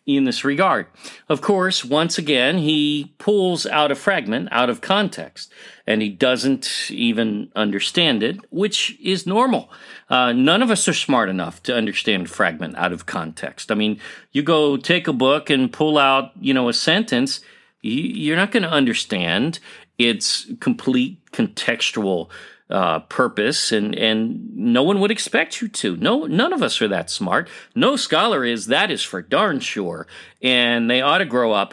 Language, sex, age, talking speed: English, male, 40-59, 170 wpm